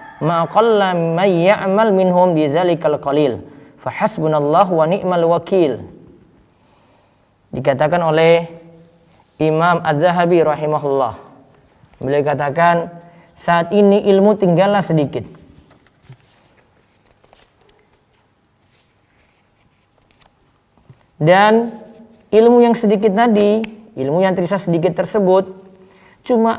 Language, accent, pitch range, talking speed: Indonesian, native, 145-200 Hz, 65 wpm